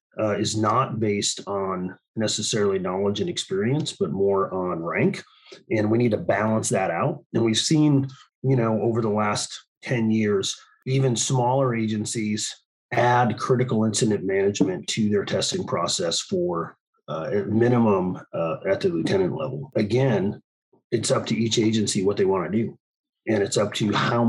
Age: 30-49